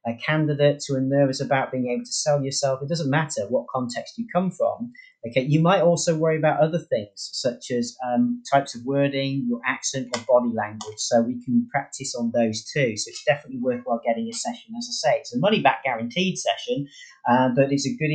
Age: 30-49